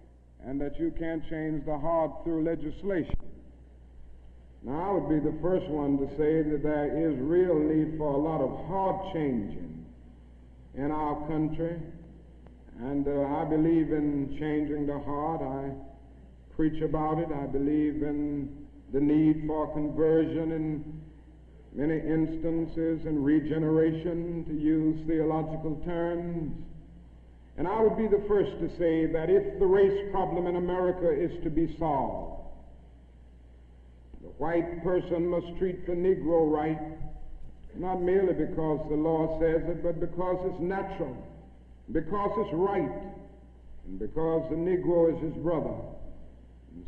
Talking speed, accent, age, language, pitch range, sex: 140 wpm, American, 60-79, English, 140-170 Hz, male